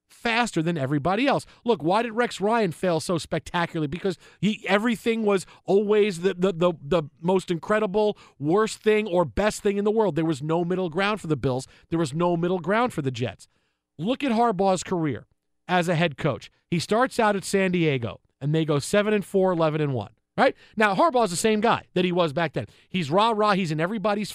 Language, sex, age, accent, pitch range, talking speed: English, male, 40-59, American, 160-205 Hz, 210 wpm